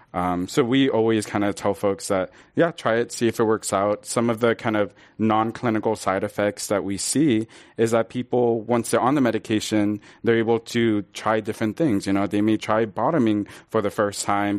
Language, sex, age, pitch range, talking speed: English, male, 20-39, 100-115 Hz, 215 wpm